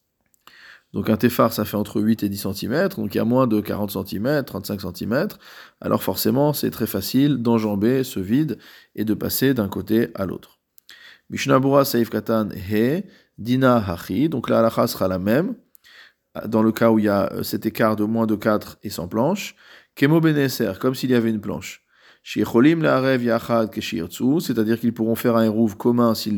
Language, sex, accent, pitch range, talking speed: French, male, French, 110-130 Hz, 180 wpm